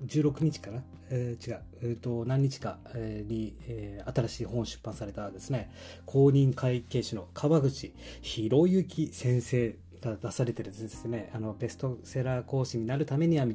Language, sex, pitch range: Japanese, male, 110-150 Hz